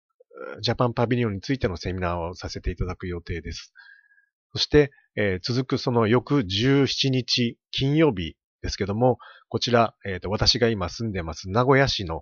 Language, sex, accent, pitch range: Japanese, male, native, 95-130 Hz